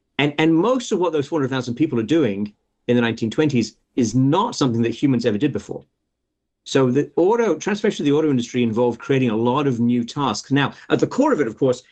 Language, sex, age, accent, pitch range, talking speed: English, male, 40-59, British, 120-160 Hz, 230 wpm